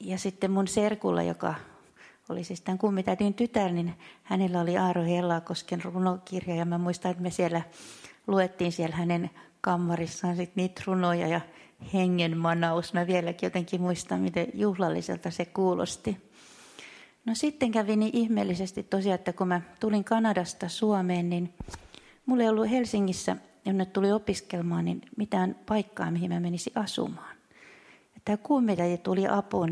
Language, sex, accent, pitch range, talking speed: Finnish, female, native, 175-200 Hz, 140 wpm